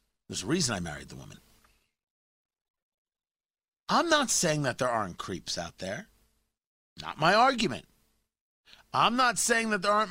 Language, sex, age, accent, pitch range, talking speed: English, male, 50-69, American, 150-210 Hz, 150 wpm